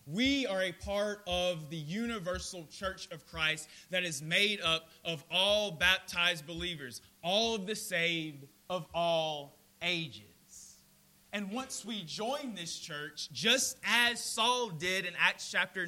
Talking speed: 145 wpm